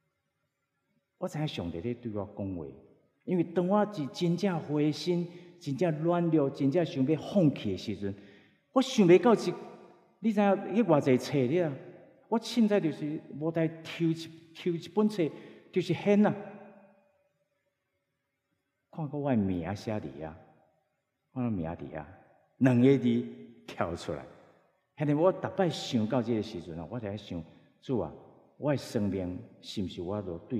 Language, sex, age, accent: English, male, 50-69, Chinese